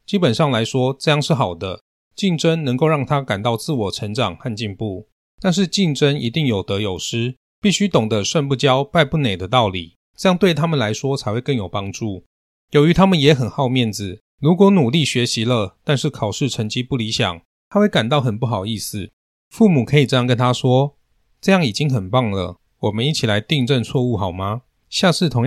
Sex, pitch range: male, 105-150 Hz